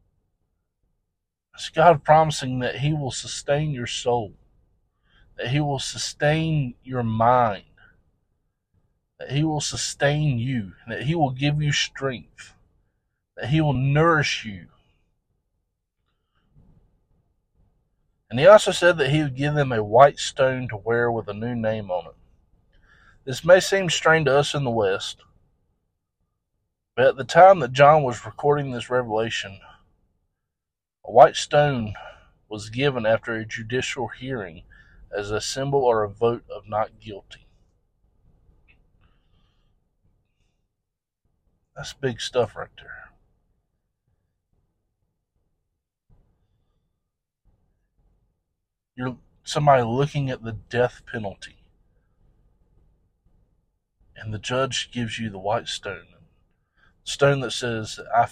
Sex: male